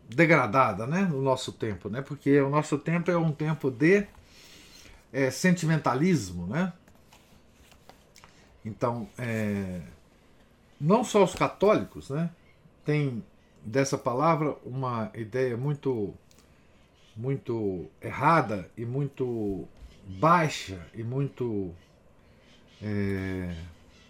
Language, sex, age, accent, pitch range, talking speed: Portuguese, male, 50-69, Brazilian, 100-155 Hz, 95 wpm